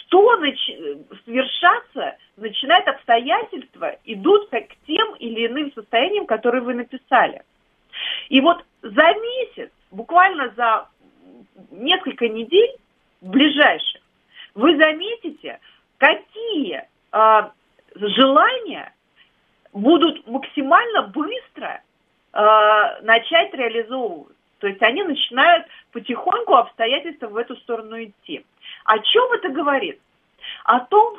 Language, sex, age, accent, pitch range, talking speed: Russian, female, 40-59, native, 240-365 Hz, 90 wpm